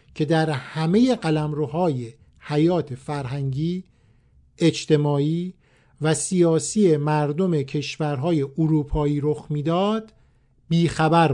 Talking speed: 80 wpm